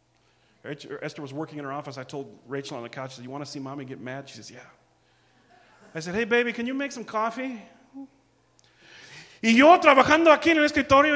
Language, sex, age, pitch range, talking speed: English, male, 30-49, 175-255 Hz, 210 wpm